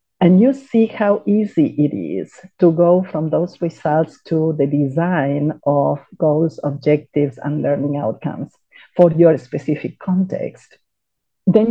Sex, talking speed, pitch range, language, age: female, 135 wpm, 140-180 Hz, English, 50-69